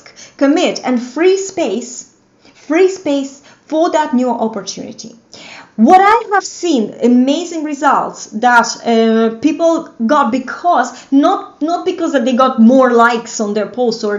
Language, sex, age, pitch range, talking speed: English, female, 30-49, 235-310 Hz, 140 wpm